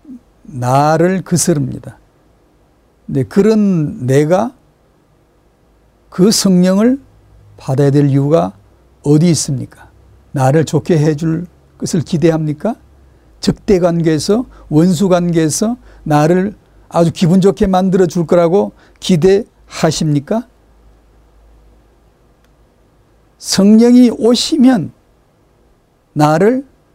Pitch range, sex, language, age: 150-215 Hz, male, Korean, 50-69